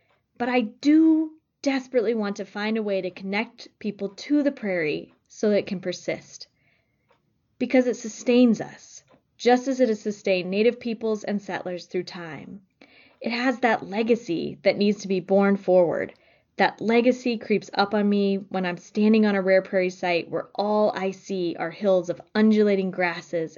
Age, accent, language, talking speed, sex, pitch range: 20-39, American, English, 175 wpm, female, 185-230 Hz